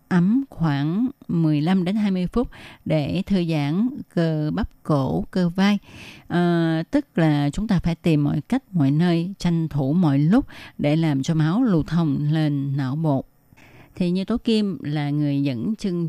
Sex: female